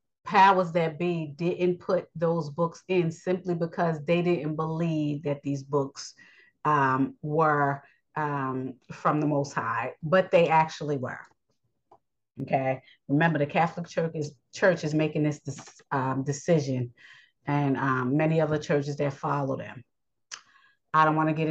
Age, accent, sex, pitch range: 30-49, American, female, 150-175 Hz